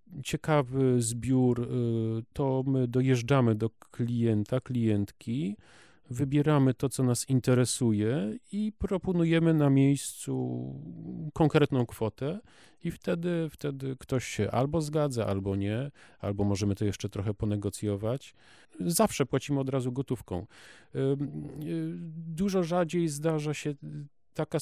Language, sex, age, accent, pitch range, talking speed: Polish, male, 40-59, native, 105-150 Hz, 105 wpm